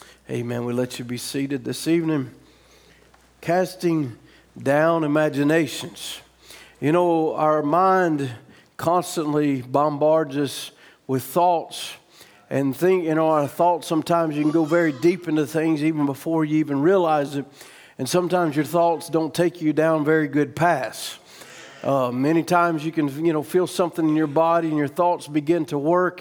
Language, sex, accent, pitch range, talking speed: English, male, American, 150-175 Hz, 160 wpm